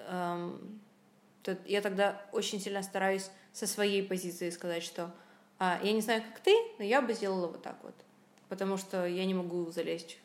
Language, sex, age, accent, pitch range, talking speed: Ukrainian, female, 20-39, native, 175-205 Hz, 175 wpm